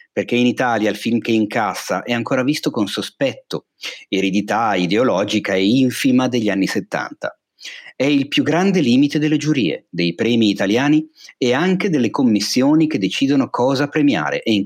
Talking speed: 160 wpm